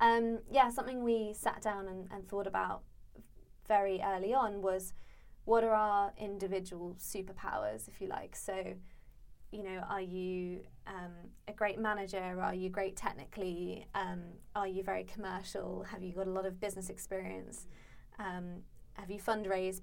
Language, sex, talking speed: English, female, 155 wpm